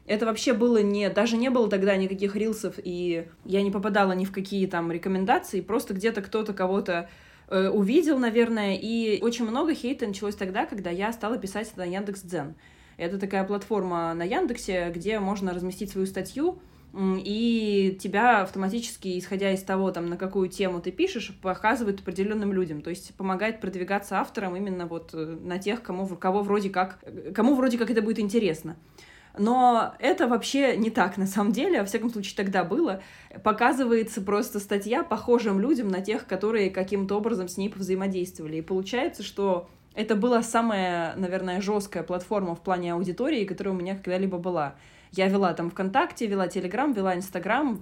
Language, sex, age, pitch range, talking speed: Russian, female, 20-39, 185-220 Hz, 170 wpm